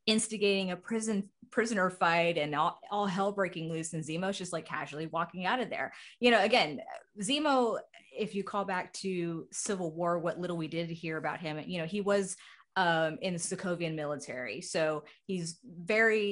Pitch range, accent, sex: 150-190 Hz, American, female